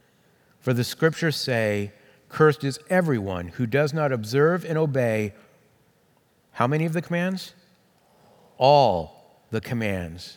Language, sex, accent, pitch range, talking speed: English, male, American, 105-155 Hz, 120 wpm